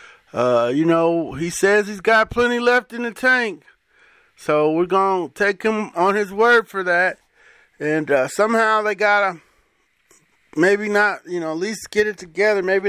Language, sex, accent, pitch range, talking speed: English, male, American, 145-210 Hz, 170 wpm